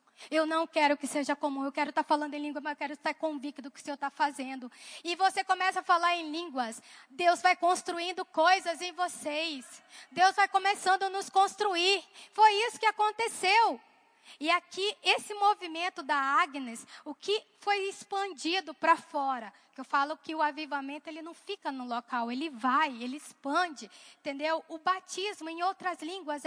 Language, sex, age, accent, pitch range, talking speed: Portuguese, female, 20-39, Brazilian, 280-350 Hz, 175 wpm